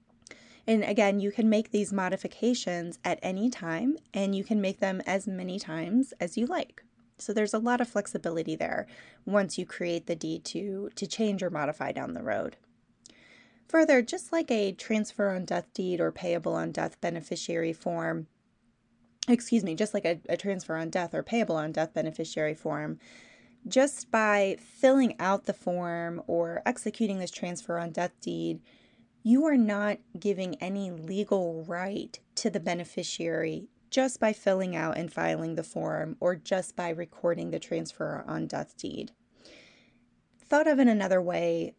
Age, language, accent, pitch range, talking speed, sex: 20-39, English, American, 170-220 Hz, 165 wpm, female